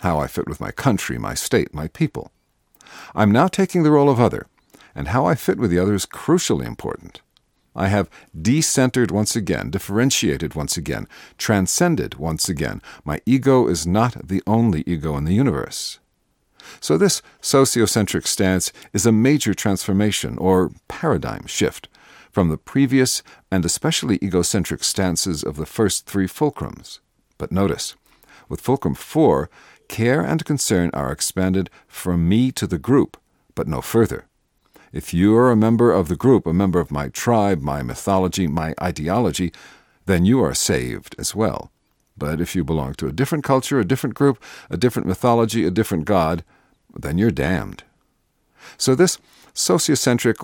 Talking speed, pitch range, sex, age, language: 160 wpm, 90-125 Hz, male, 50-69, English